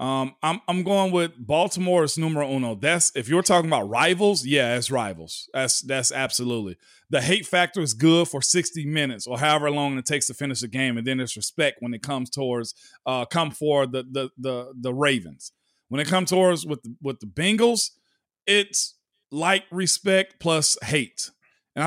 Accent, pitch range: American, 130-170 Hz